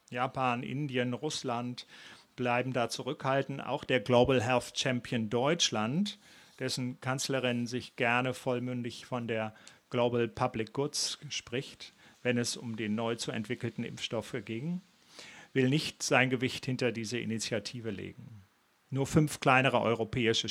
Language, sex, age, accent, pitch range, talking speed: German, male, 40-59, German, 115-135 Hz, 130 wpm